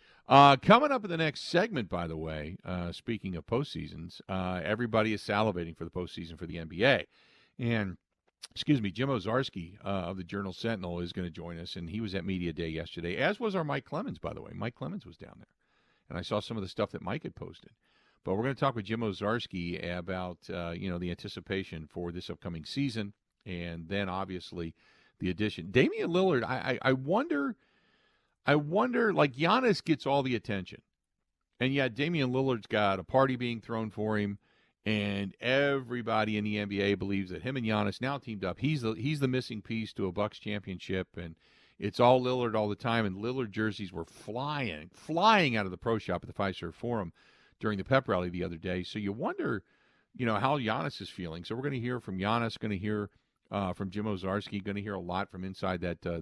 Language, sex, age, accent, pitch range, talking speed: English, male, 50-69, American, 90-120 Hz, 215 wpm